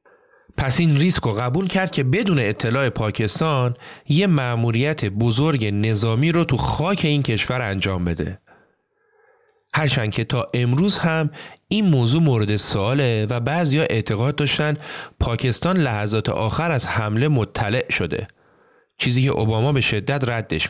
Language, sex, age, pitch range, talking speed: Persian, male, 30-49, 115-150 Hz, 135 wpm